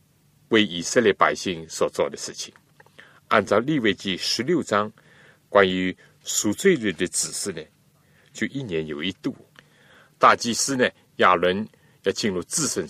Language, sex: Chinese, male